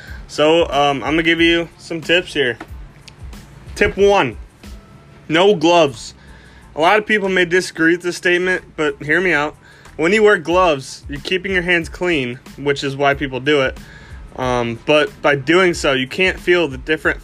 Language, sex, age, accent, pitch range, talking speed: English, male, 20-39, American, 135-165 Hz, 180 wpm